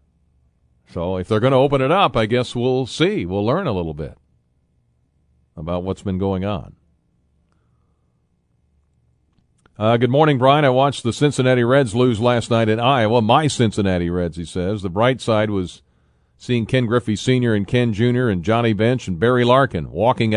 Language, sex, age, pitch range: English, male, 50-69, 70-110 Hz